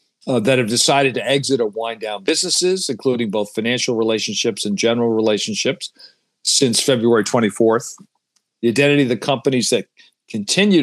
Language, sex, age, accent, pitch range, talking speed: English, male, 50-69, American, 105-130 Hz, 150 wpm